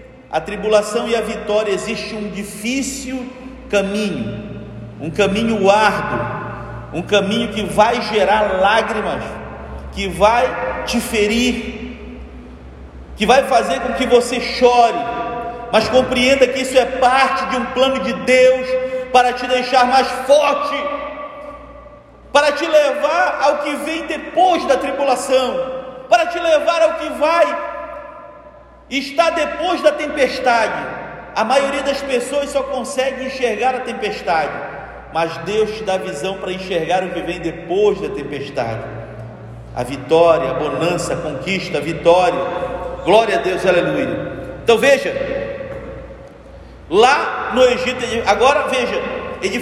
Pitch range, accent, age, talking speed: 200-270 Hz, Brazilian, 40-59, 130 wpm